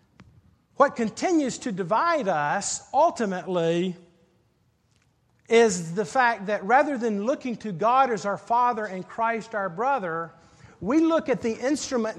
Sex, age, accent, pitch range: male, 50-69, American, 205-280 Hz